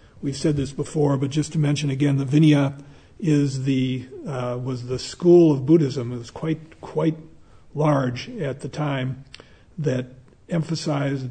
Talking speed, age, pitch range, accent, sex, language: 155 wpm, 50-69, 125-150 Hz, American, male, English